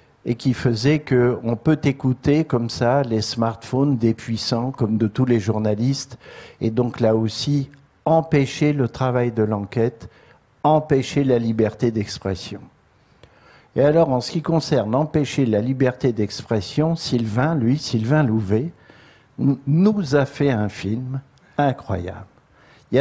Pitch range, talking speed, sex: 120-155 Hz, 135 wpm, male